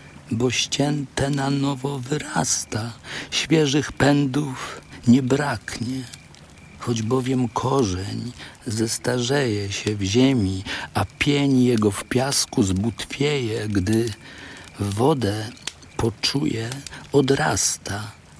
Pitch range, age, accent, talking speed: 95-125 Hz, 50-69, native, 85 wpm